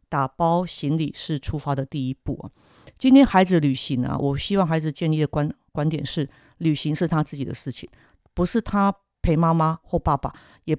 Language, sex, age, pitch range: Chinese, female, 50-69, 140-185 Hz